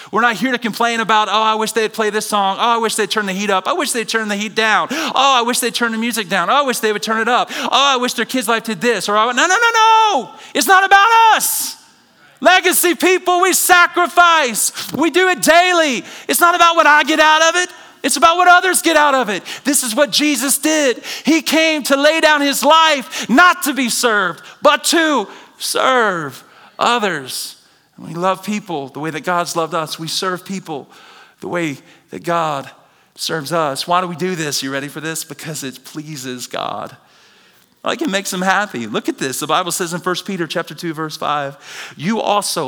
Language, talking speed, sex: English, 220 wpm, male